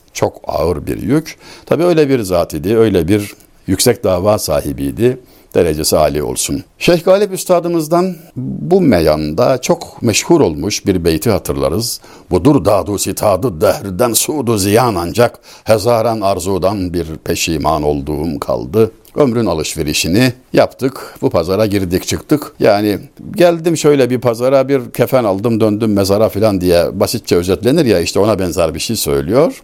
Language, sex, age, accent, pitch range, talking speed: Turkish, male, 60-79, native, 100-150 Hz, 140 wpm